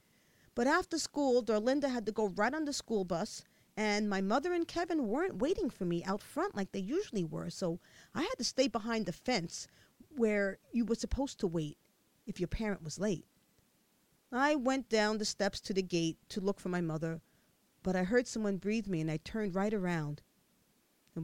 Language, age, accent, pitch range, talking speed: English, 40-59, American, 180-255 Hz, 200 wpm